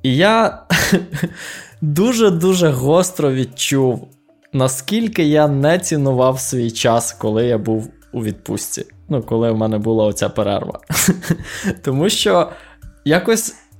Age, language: 20-39, Ukrainian